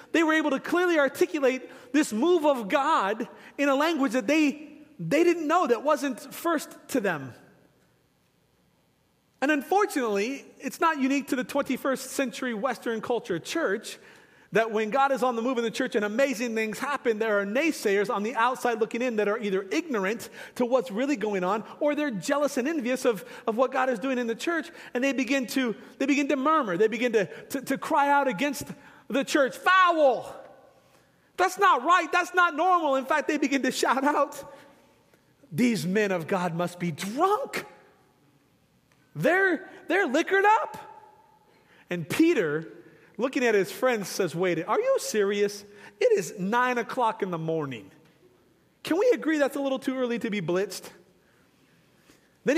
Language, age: English, 40-59